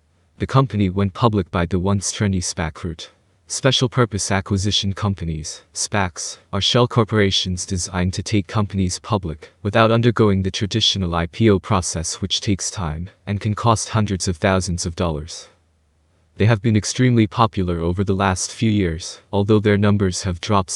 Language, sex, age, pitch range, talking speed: English, male, 20-39, 90-105 Hz, 155 wpm